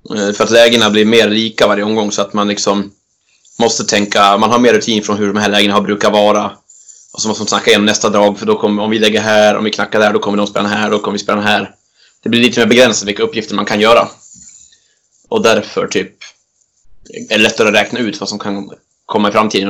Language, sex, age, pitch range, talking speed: Swedish, male, 20-39, 105-110 Hz, 245 wpm